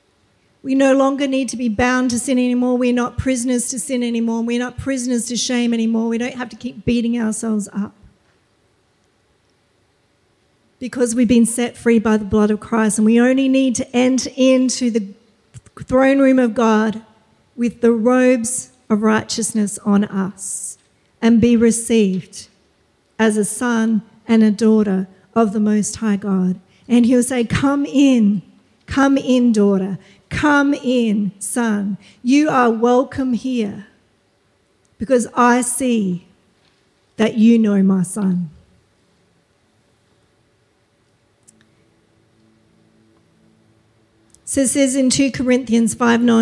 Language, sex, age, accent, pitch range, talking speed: English, female, 50-69, Australian, 210-260 Hz, 130 wpm